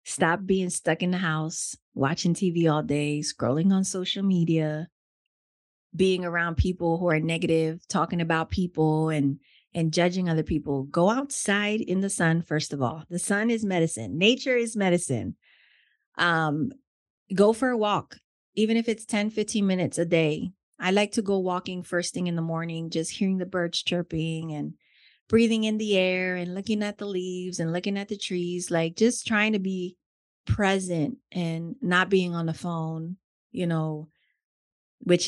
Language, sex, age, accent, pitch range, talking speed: English, female, 30-49, American, 160-195 Hz, 170 wpm